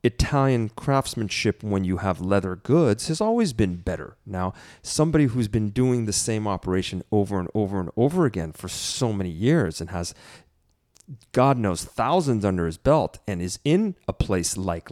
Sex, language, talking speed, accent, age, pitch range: male, English, 175 wpm, American, 40-59, 95-140 Hz